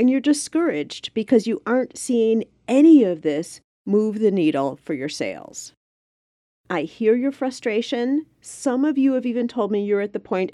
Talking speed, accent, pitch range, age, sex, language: 175 wpm, American, 175-265 Hz, 40-59, female, English